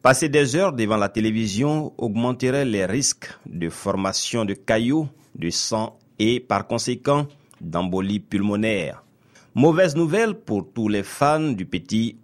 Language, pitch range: French, 100-145 Hz